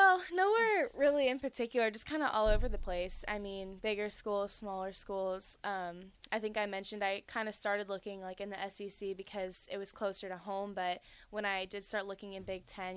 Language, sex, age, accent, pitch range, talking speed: English, female, 10-29, American, 185-210 Hz, 215 wpm